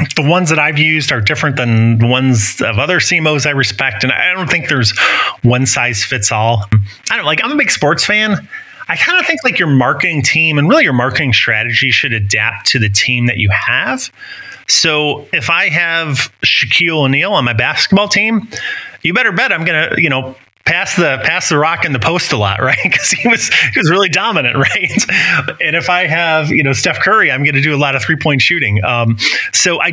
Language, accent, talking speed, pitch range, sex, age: English, American, 225 wpm, 115-155 Hz, male, 30-49